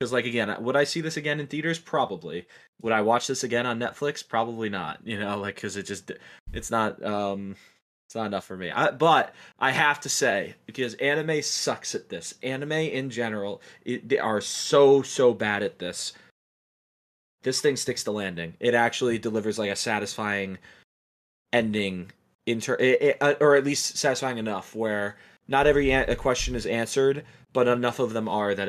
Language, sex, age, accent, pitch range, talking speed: English, male, 20-39, American, 100-125 Hz, 175 wpm